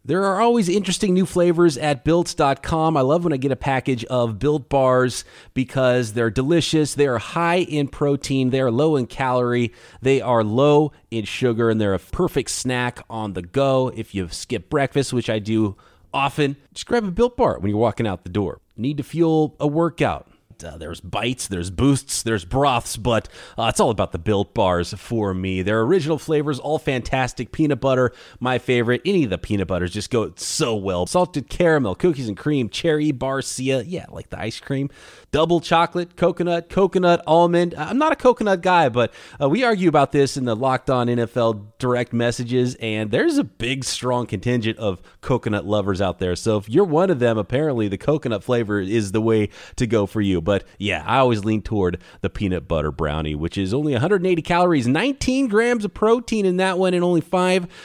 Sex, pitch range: male, 110-160 Hz